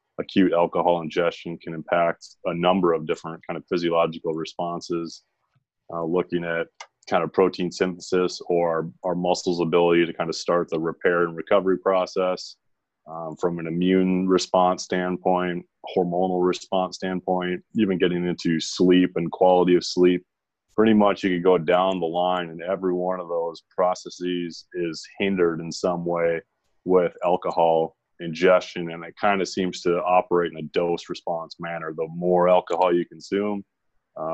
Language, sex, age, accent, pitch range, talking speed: English, male, 30-49, American, 85-90 Hz, 160 wpm